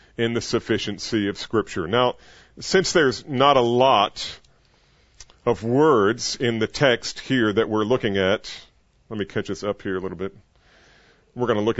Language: English